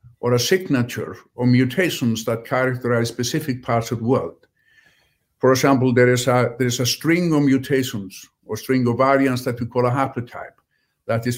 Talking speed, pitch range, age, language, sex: 180 wpm, 120-140 Hz, 50-69, Danish, male